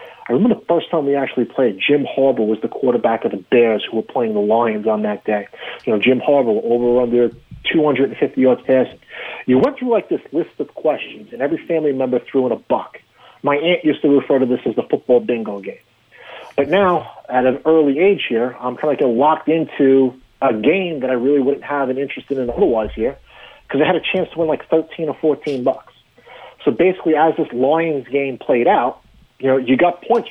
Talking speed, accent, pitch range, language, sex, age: 220 wpm, American, 125-150 Hz, English, male, 40-59